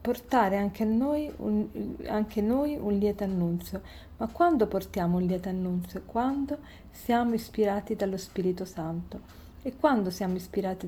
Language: Italian